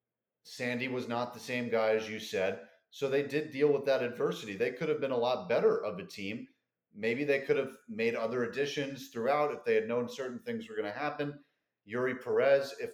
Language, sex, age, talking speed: English, male, 30-49, 220 wpm